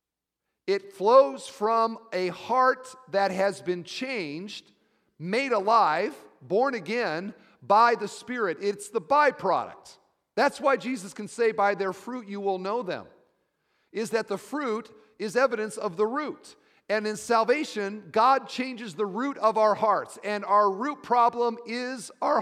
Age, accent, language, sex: 40-59, American, English, male